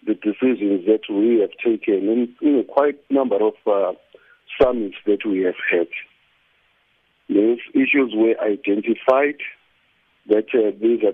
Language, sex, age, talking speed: English, male, 50-69, 135 wpm